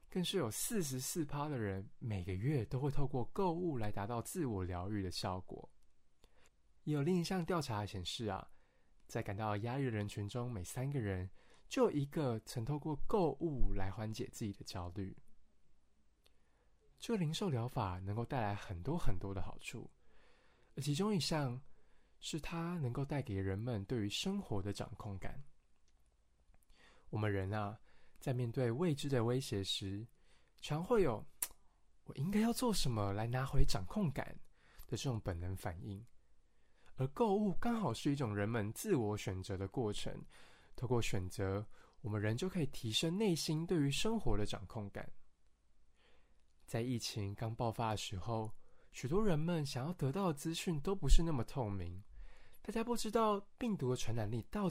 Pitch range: 100-145 Hz